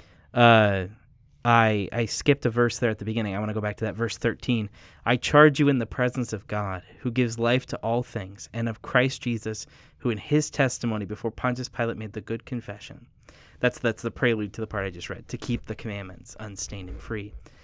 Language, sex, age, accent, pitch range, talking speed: English, male, 20-39, American, 105-125 Hz, 220 wpm